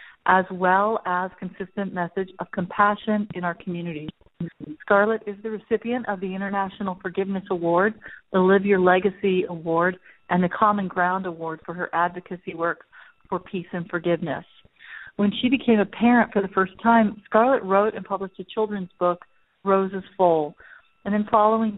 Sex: female